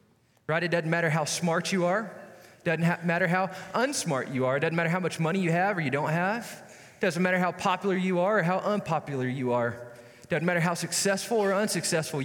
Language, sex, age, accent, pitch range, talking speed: English, male, 20-39, American, 135-195 Hz, 205 wpm